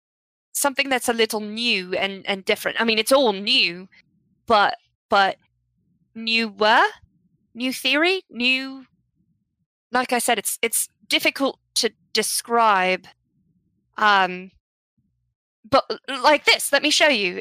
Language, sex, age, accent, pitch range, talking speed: English, female, 20-39, American, 190-235 Hz, 120 wpm